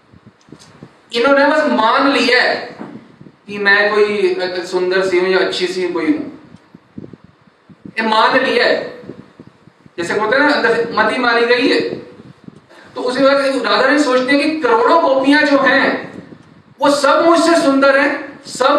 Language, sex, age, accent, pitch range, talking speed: Hindi, male, 40-59, native, 225-290 Hz, 145 wpm